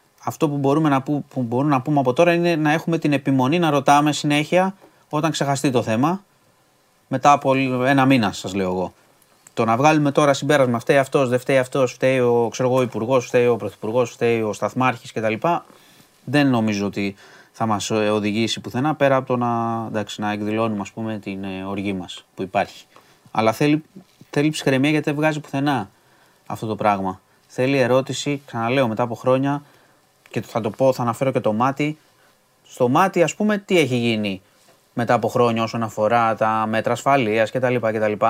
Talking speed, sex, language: 170 wpm, male, Greek